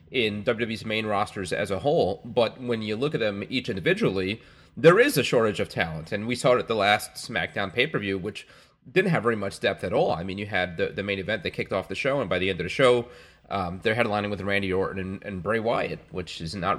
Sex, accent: male, American